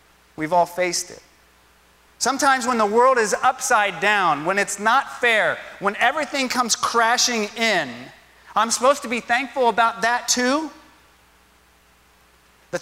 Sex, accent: male, American